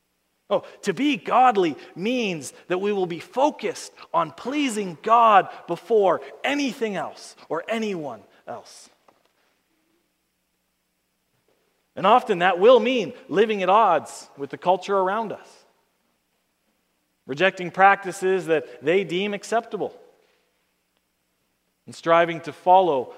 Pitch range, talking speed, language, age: 150-215 Hz, 110 wpm, English, 40-59